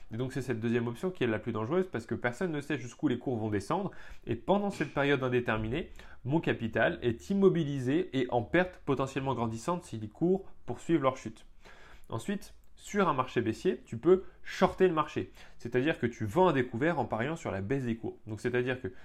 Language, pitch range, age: French, 110-155 Hz, 20-39